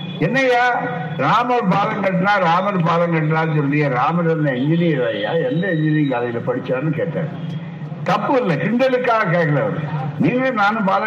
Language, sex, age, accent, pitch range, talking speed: Tamil, male, 60-79, native, 155-195 Hz, 60 wpm